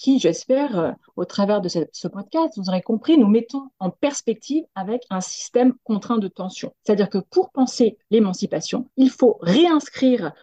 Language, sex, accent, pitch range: French, female, French, 200-265 Hz